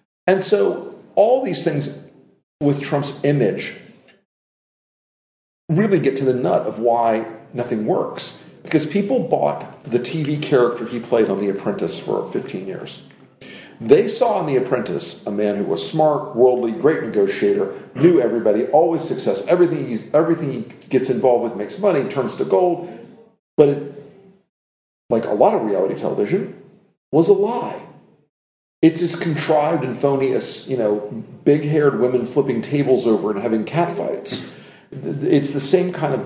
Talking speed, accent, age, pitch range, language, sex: 155 wpm, American, 50-69, 115-165 Hz, English, male